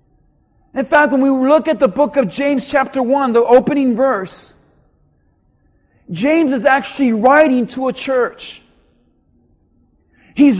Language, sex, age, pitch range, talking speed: English, male, 40-59, 245-290 Hz, 130 wpm